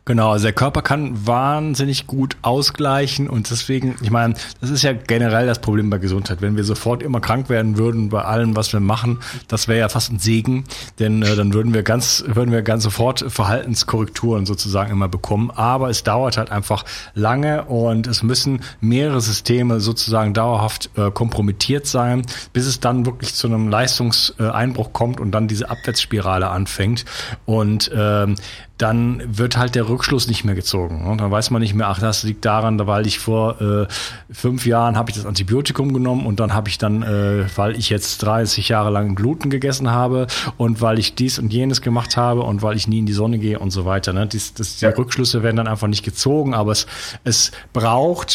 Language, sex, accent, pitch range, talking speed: German, male, German, 105-125 Hz, 200 wpm